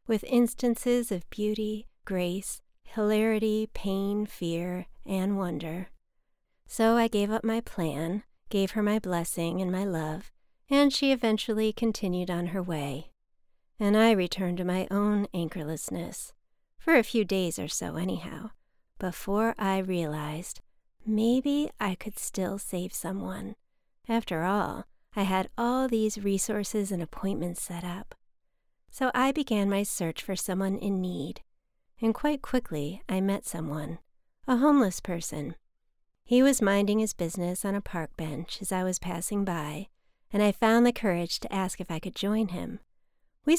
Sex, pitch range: female, 175-220 Hz